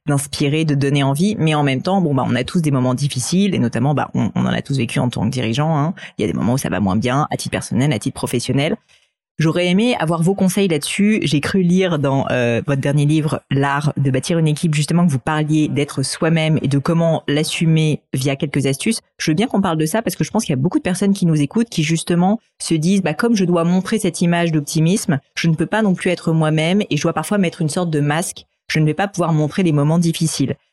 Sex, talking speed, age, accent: female, 270 wpm, 30-49, French